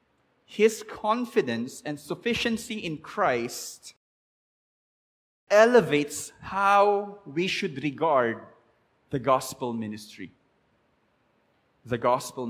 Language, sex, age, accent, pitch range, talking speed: English, male, 20-39, Filipino, 135-185 Hz, 75 wpm